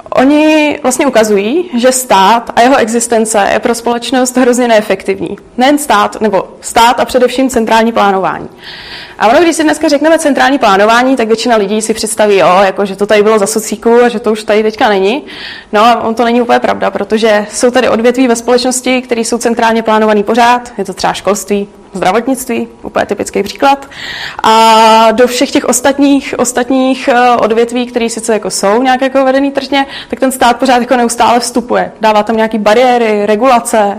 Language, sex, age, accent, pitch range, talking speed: Czech, female, 20-39, native, 215-255 Hz, 180 wpm